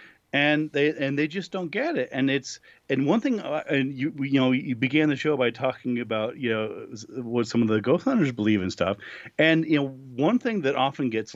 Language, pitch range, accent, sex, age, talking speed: English, 125-155 Hz, American, male, 40-59, 230 wpm